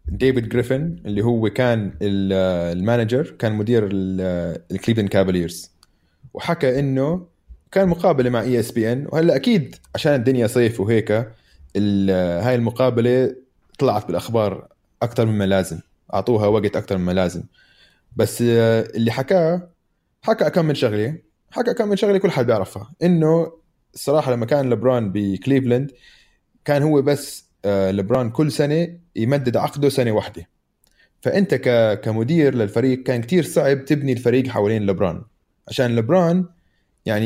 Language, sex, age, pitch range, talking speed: Arabic, male, 20-39, 105-145 Hz, 125 wpm